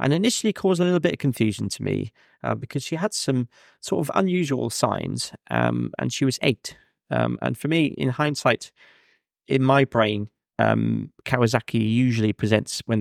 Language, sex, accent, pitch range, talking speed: English, male, British, 105-135 Hz, 175 wpm